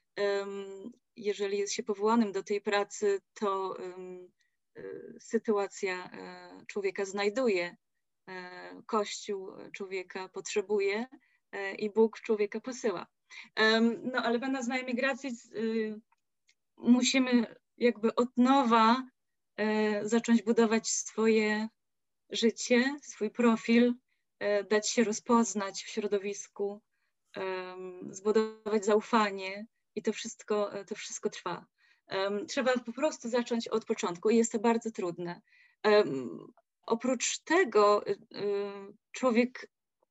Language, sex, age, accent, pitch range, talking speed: Polish, female, 20-39, native, 200-240 Hz, 100 wpm